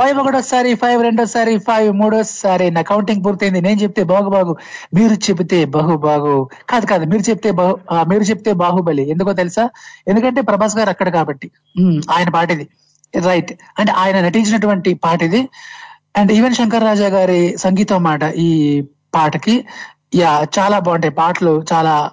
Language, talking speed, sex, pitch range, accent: Telugu, 145 wpm, male, 175-230 Hz, native